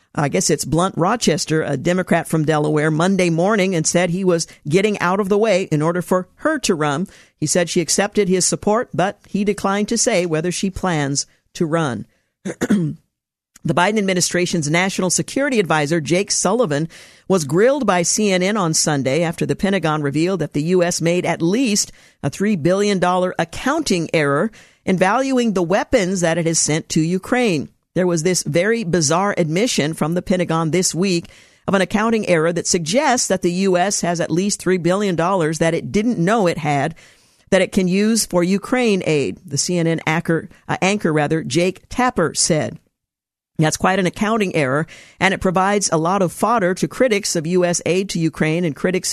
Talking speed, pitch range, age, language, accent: 185 wpm, 165-195 Hz, 50-69, English, American